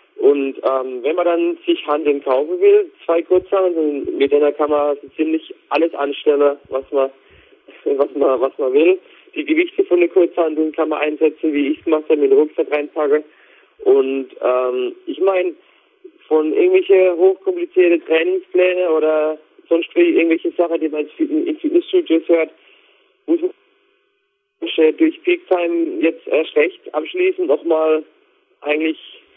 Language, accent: German, German